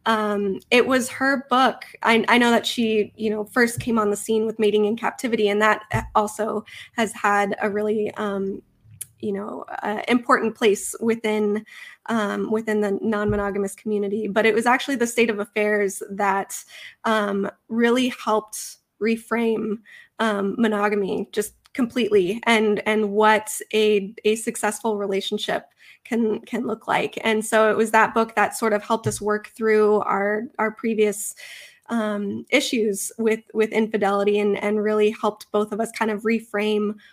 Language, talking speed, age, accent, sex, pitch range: English, 160 wpm, 20-39, American, female, 205-225 Hz